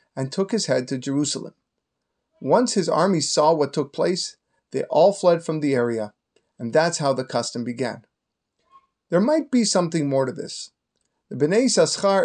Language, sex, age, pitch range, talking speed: English, male, 30-49, 135-190 Hz, 170 wpm